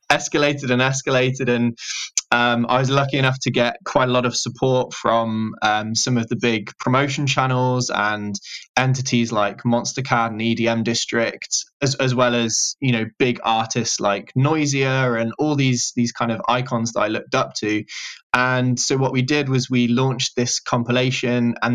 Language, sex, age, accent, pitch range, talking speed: English, male, 20-39, British, 115-130 Hz, 175 wpm